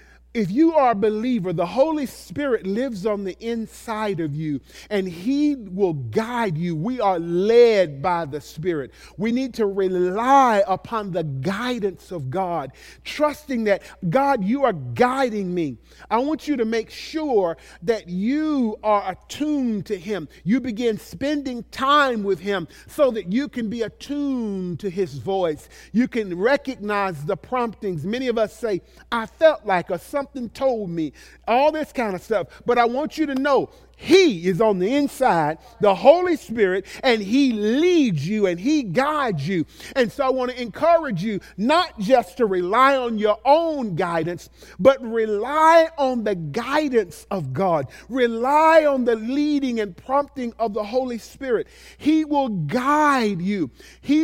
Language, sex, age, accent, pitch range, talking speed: English, male, 40-59, American, 195-270 Hz, 165 wpm